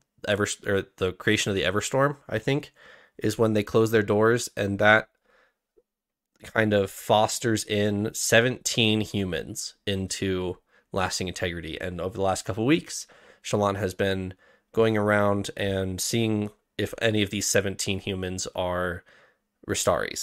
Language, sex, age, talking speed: English, male, 20-39, 140 wpm